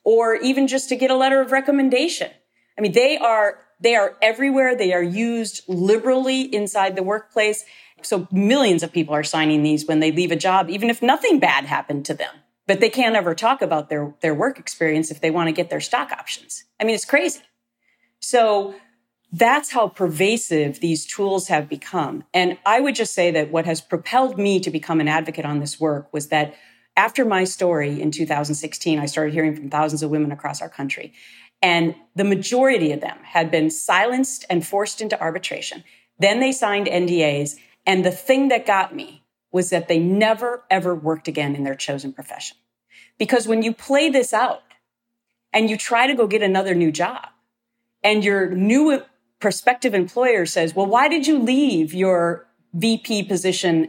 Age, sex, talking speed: 40-59, female, 185 wpm